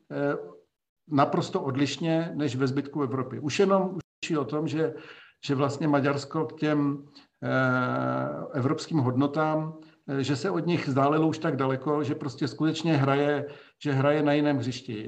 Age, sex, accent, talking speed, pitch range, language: 60-79, male, native, 145 wpm, 130-150 Hz, Czech